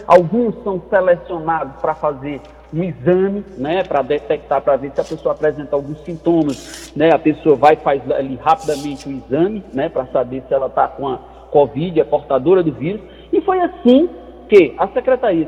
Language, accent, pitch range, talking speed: Portuguese, Brazilian, 160-255 Hz, 180 wpm